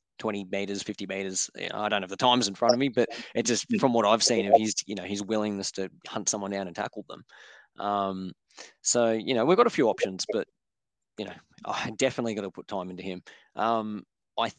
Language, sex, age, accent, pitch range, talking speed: English, male, 20-39, Australian, 100-115 Hz, 240 wpm